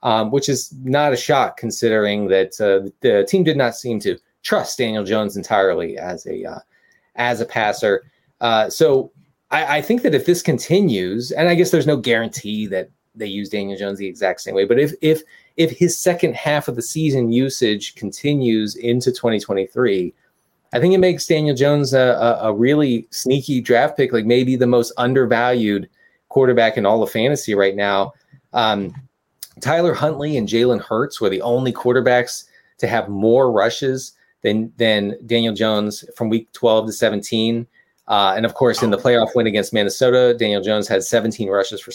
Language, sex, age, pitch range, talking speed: English, male, 30-49, 105-140 Hz, 180 wpm